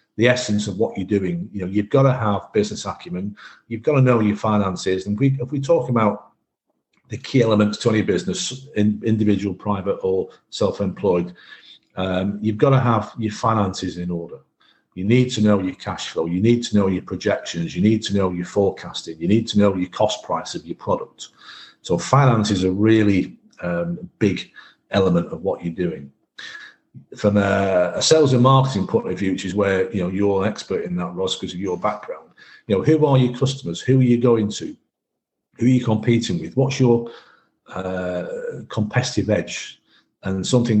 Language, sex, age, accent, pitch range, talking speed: English, male, 40-59, British, 95-120 Hz, 195 wpm